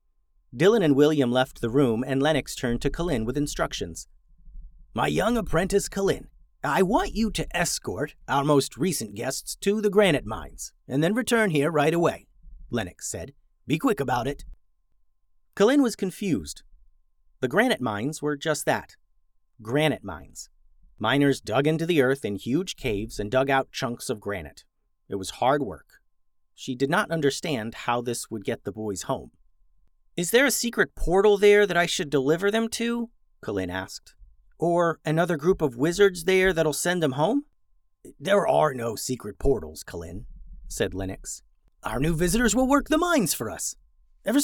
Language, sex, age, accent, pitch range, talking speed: English, male, 40-59, American, 120-195 Hz, 165 wpm